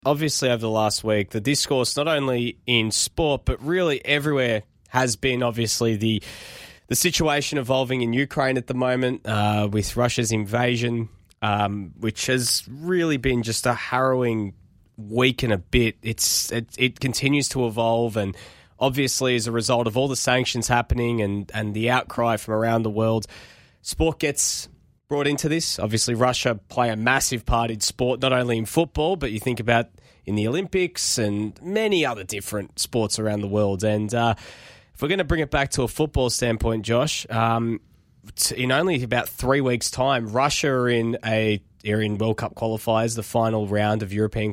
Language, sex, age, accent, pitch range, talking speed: English, male, 20-39, Australian, 110-130 Hz, 175 wpm